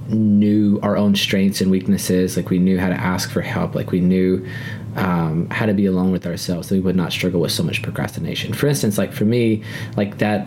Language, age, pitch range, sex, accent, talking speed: English, 20-39, 95-115 Hz, male, American, 230 wpm